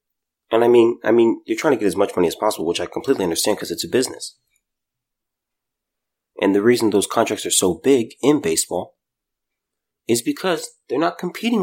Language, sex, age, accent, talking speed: English, male, 30-49, American, 190 wpm